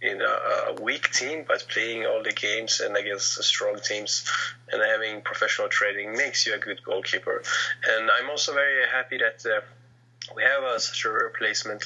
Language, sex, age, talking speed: English, male, 20-39, 175 wpm